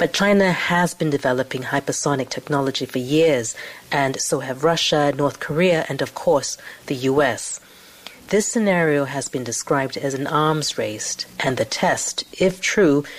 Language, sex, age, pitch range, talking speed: English, female, 40-59, 135-175 Hz, 155 wpm